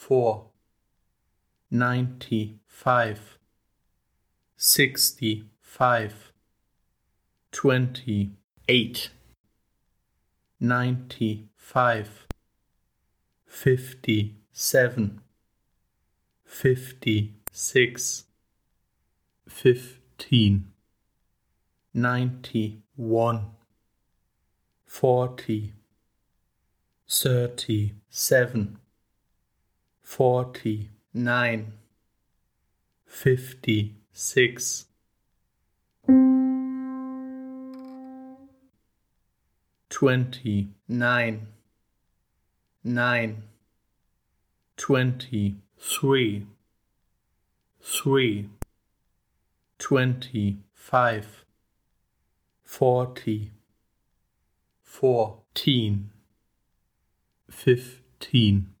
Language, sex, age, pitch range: English, male, 50-69, 105-125 Hz